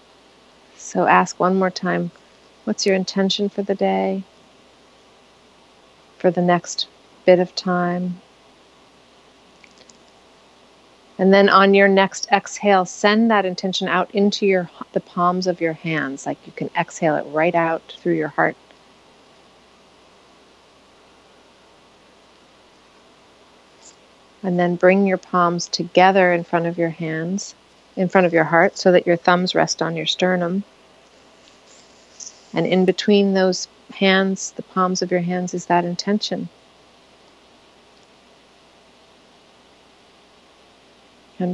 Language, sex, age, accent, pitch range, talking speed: English, female, 40-59, American, 175-195 Hz, 120 wpm